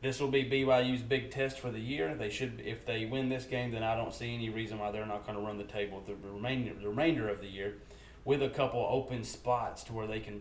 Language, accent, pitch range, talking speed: English, American, 100-120 Hz, 265 wpm